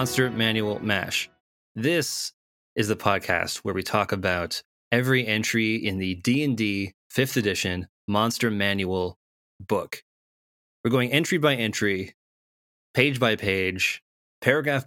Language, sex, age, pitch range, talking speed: English, male, 20-39, 95-115 Hz, 120 wpm